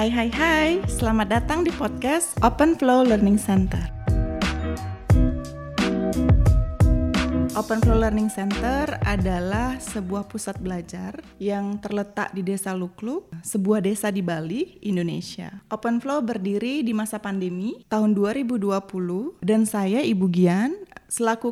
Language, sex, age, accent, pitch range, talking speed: Indonesian, female, 20-39, native, 195-235 Hz, 115 wpm